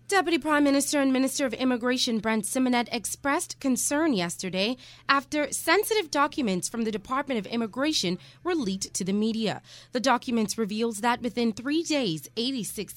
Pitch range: 200-270 Hz